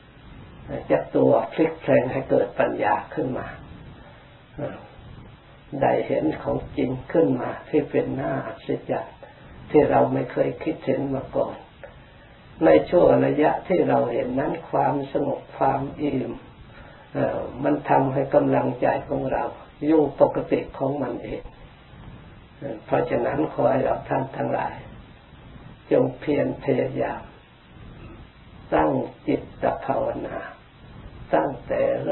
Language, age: Thai, 60-79